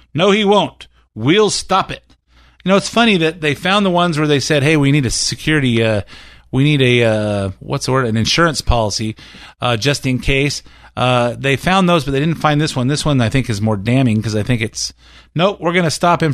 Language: English